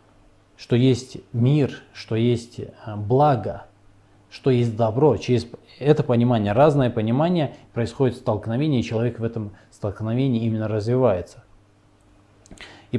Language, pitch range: Russian, 105-135 Hz